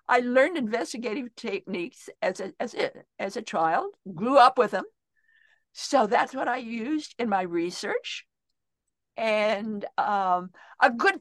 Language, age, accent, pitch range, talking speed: English, 50-69, American, 205-320 Hz, 145 wpm